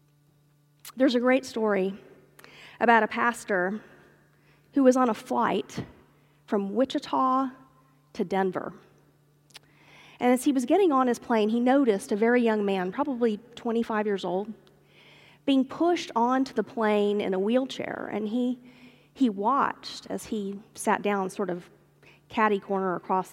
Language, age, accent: English, 40-59, American